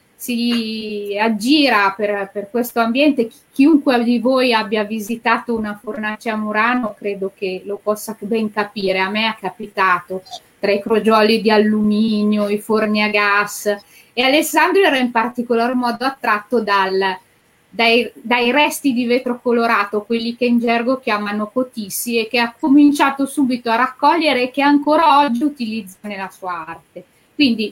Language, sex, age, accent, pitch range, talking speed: Italian, female, 20-39, native, 210-260 Hz, 150 wpm